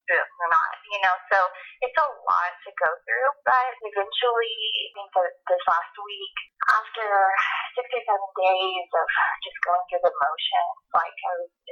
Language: English